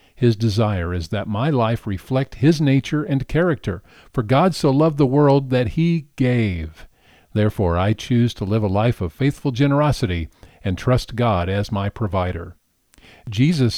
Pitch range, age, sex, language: 105-140 Hz, 50-69, male, English